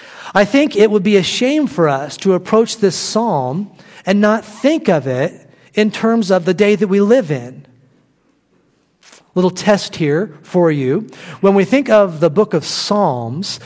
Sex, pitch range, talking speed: male, 155-210 Hz, 180 wpm